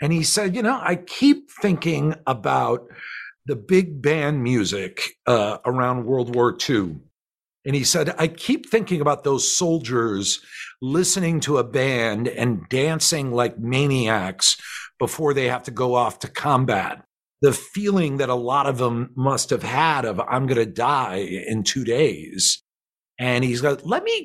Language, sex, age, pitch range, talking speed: English, male, 50-69, 125-165 Hz, 165 wpm